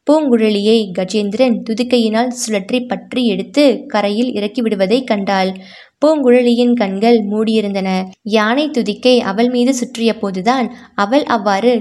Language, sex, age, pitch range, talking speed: Tamil, female, 20-39, 205-245 Hz, 100 wpm